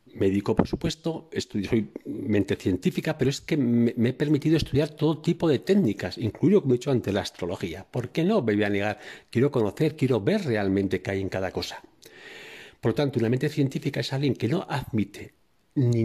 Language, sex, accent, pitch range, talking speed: Spanish, male, Spanish, 110-155 Hz, 200 wpm